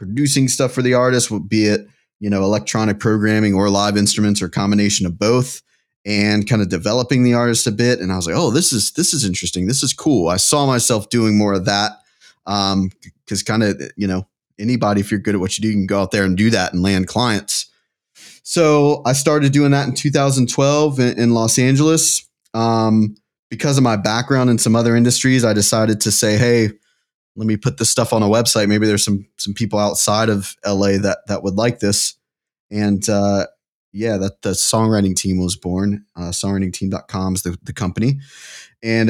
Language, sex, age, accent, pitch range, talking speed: English, male, 20-39, American, 100-120 Hz, 205 wpm